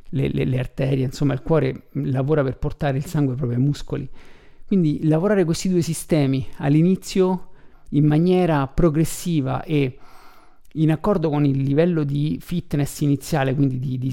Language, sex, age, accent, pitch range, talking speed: Italian, male, 50-69, native, 135-170 Hz, 150 wpm